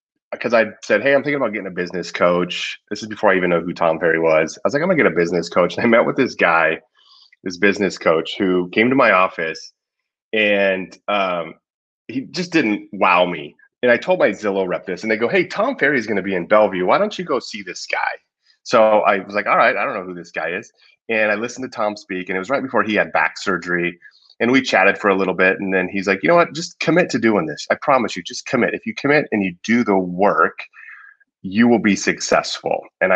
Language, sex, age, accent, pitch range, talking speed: English, male, 30-49, American, 90-120 Hz, 260 wpm